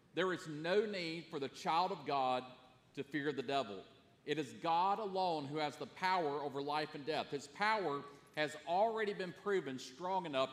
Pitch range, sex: 150-195 Hz, male